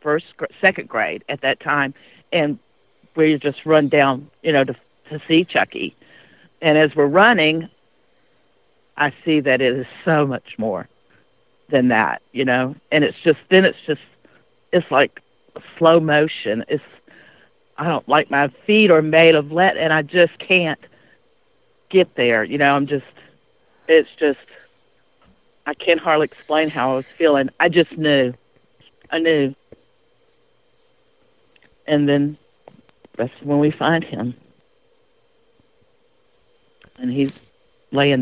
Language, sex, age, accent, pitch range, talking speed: English, female, 50-69, American, 135-210 Hz, 140 wpm